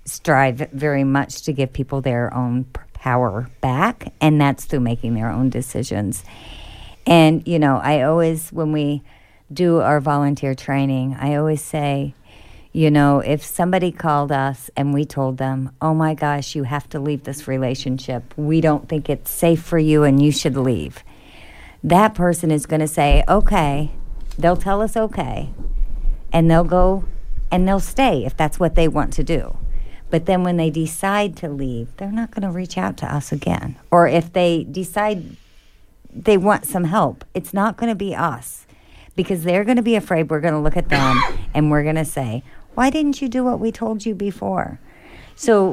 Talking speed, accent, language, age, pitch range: 185 wpm, American, English, 50-69, 135-175 Hz